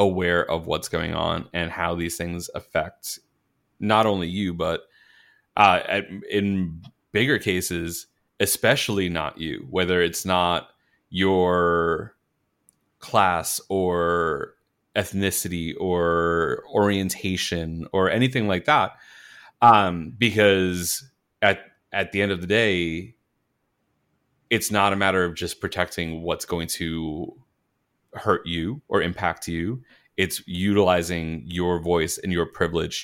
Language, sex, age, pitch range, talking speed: English, male, 30-49, 85-100 Hz, 120 wpm